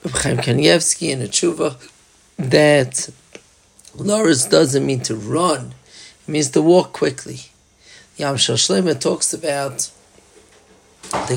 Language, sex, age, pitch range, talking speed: English, male, 40-59, 130-155 Hz, 110 wpm